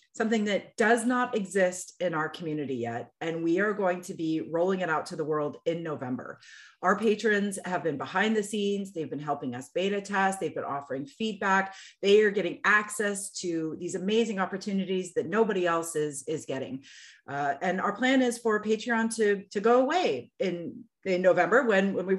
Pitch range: 165-215 Hz